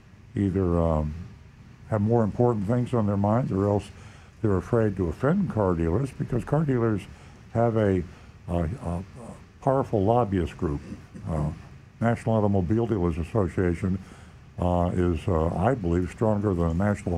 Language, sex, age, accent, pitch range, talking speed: English, male, 60-79, American, 90-115 Hz, 145 wpm